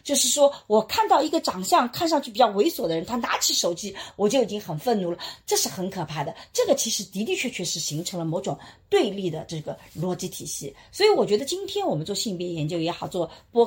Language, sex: Chinese, female